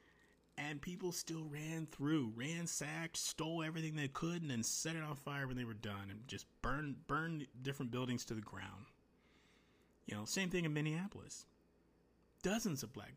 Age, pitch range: 30-49, 105-140 Hz